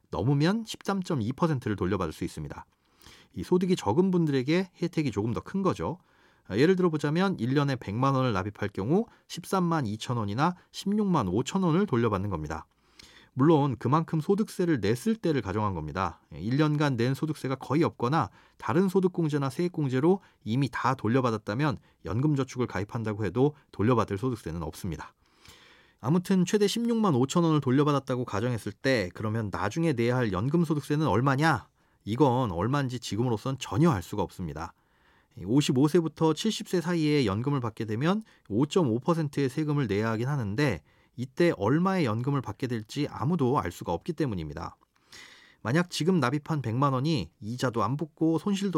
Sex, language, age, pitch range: male, Korean, 30-49, 115-165 Hz